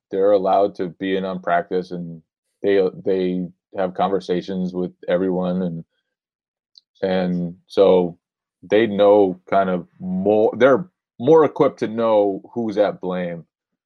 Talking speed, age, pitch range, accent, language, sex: 130 wpm, 20-39, 90-110 Hz, American, English, male